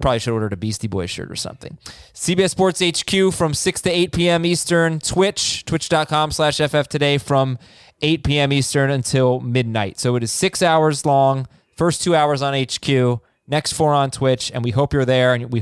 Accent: American